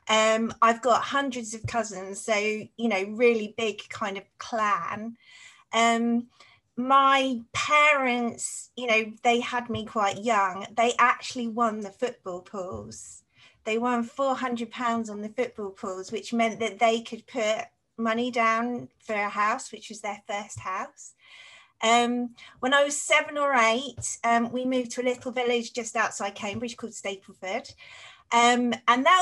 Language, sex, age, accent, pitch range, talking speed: English, female, 30-49, British, 215-245 Hz, 150 wpm